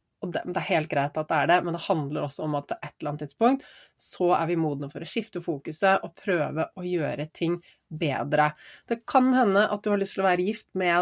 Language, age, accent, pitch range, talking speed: English, 30-49, Swedish, 150-210 Hz, 245 wpm